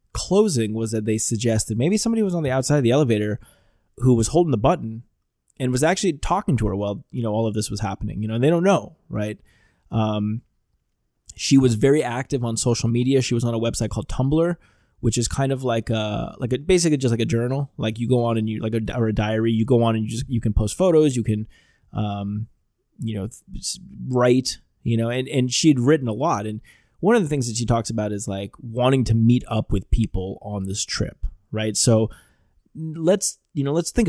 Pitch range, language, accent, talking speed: 110-140 Hz, English, American, 230 wpm